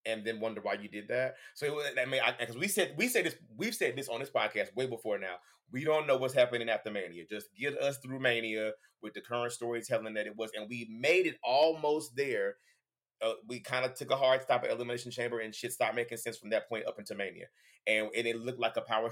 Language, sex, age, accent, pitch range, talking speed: English, male, 30-49, American, 110-130 Hz, 255 wpm